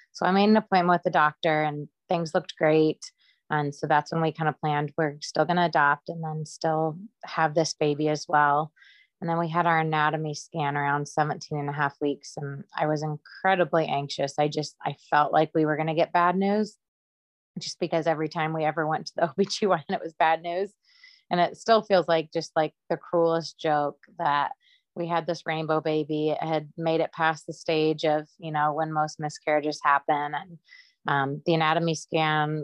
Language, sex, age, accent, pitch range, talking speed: English, female, 20-39, American, 150-175 Hz, 205 wpm